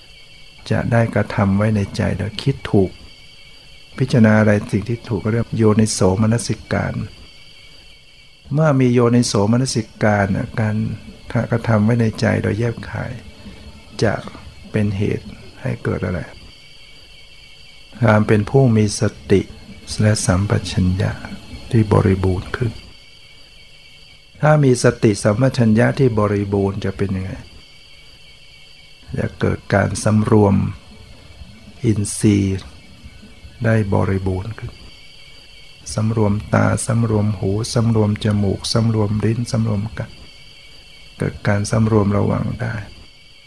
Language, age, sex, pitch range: Thai, 60-79, male, 100-115 Hz